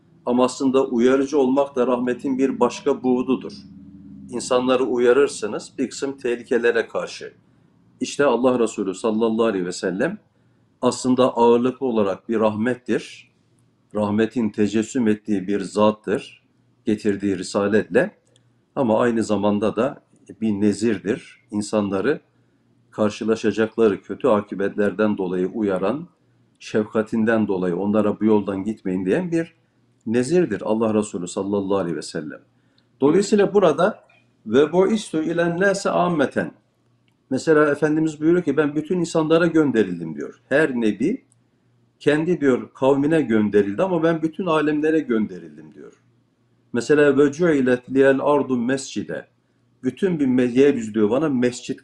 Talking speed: 115 wpm